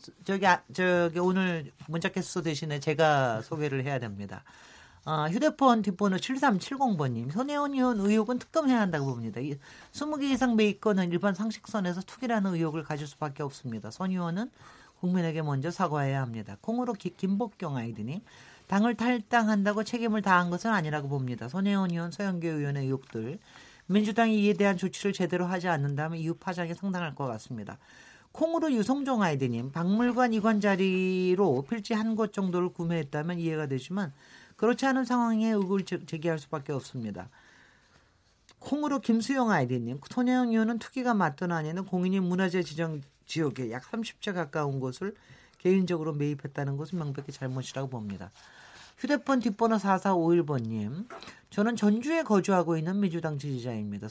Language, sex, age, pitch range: Korean, male, 40-59, 150-215 Hz